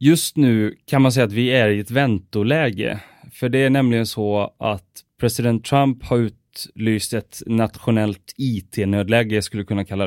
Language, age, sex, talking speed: English, 30-49, male, 160 wpm